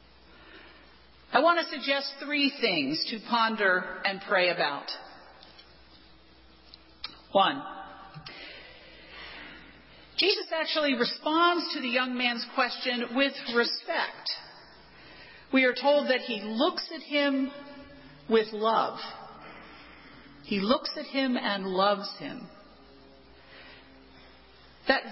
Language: English